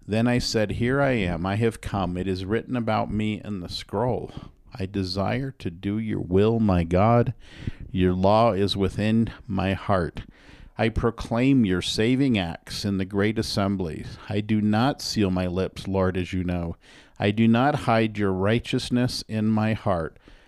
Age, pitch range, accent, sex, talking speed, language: 50-69, 95-120 Hz, American, male, 175 wpm, English